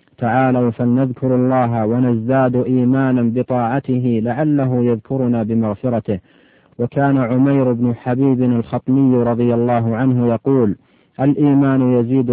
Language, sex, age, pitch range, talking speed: Arabic, male, 50-69, 120-130 Hz, 95 wpm